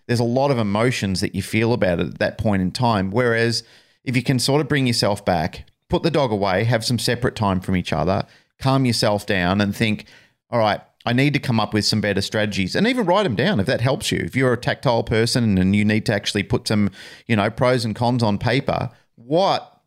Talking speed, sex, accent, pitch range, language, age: 240 wpm, male, Australian, 105-130 Hz, English, 40-59